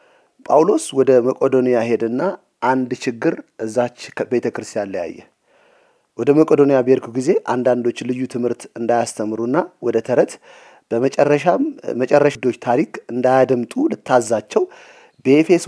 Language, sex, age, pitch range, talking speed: English, male, 30-49, 125-190 Hz, 65 wpm